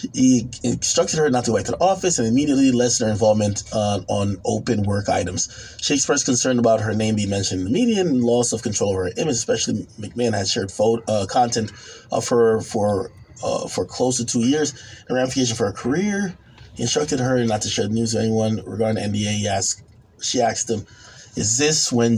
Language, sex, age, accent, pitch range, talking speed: English, male, 20-39, American, 100-120 Hz, 215 wpm